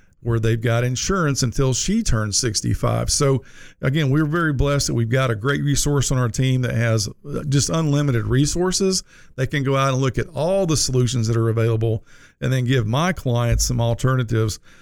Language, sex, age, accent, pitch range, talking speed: English, male, 50-69, American, 115-145 Hz, 190 wpm